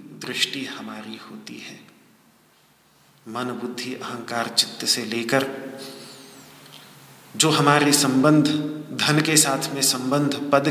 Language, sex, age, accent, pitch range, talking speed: Hindi, male, 40-59, native, 135-180 Hz, 105 wpm